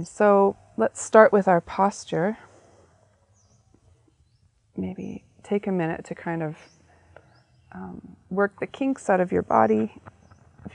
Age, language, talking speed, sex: 30-49, English, 125 wpm, female